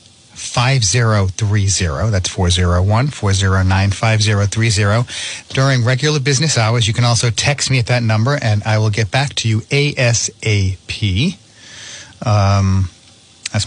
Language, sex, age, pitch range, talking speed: English, male, 40-59, 100-125 Hz, 120 wpm